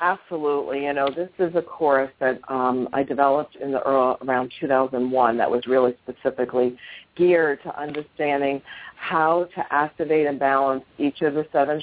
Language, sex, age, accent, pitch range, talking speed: English, female, 50-69, American, 135-165 Hz, 160 wpm